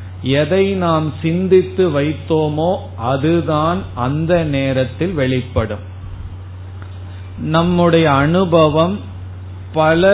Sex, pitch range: male, 125-165 Hz